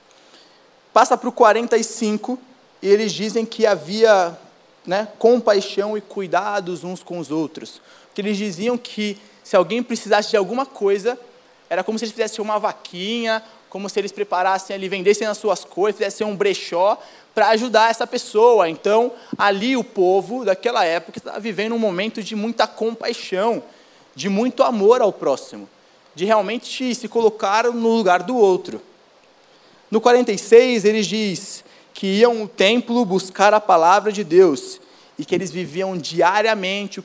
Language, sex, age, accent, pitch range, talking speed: Portuguese, male, 20-39, Brazilian, 185-225 Hz, 155 wpm